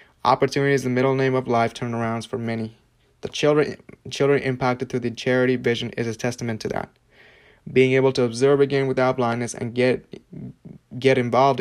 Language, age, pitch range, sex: English, 20-39, 115-130 Hz, male